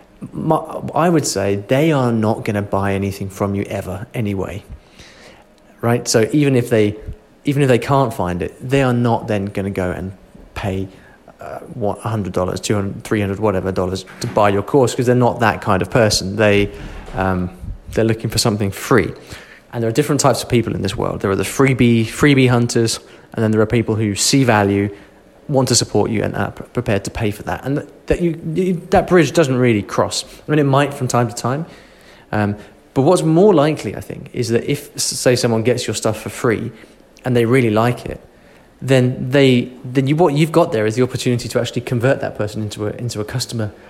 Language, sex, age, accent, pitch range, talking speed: English, male, 30-49, British, 100-130 Hz, 215 wpm